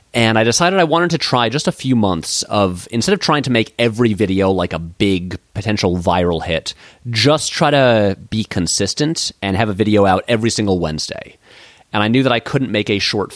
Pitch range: 100-130 Hz